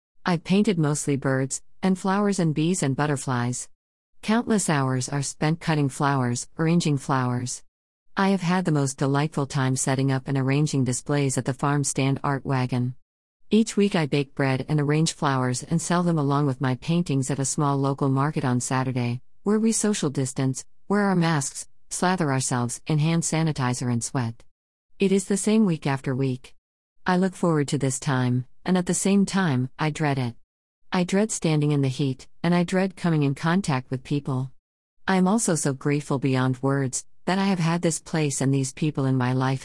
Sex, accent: female, American